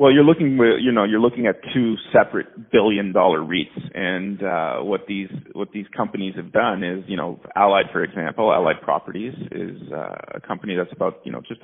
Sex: male